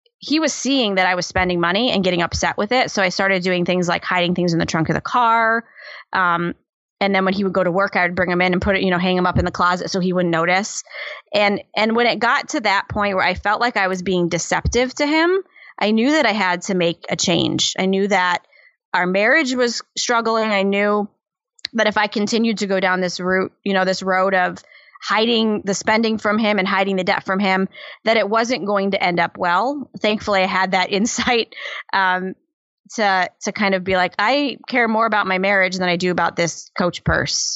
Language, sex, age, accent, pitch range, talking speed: English, female, 20-39, American, 185-225 Hz, 240 wpm